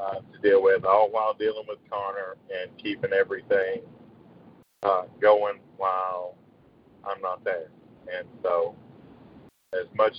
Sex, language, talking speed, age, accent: male, English, 130 wpm, 50-69, American